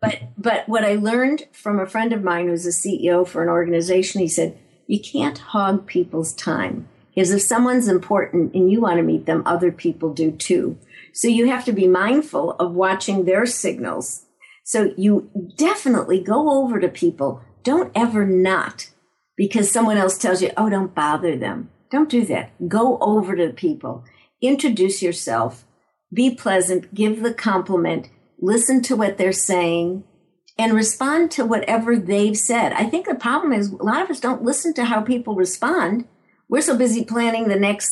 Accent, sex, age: American, female, 60-79